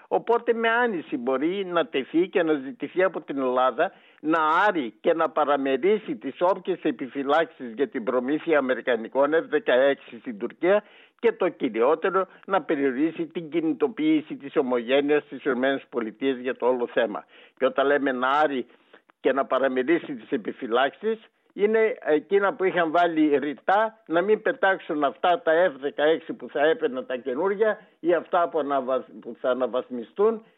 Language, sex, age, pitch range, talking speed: Greek, male, 60-79, 145-190 Hz, 145 wpm